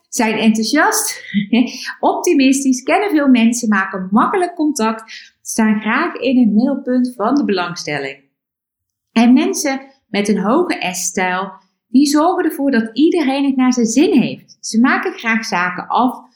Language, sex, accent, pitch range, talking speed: Dutch, female, Dutch, 205-285 Hz, 140 wpm